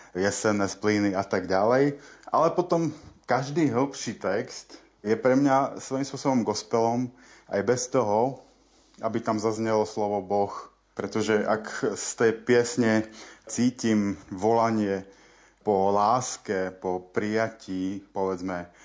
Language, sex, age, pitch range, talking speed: Slovak, male, 30-49, 100-115 Hz, 115 wpm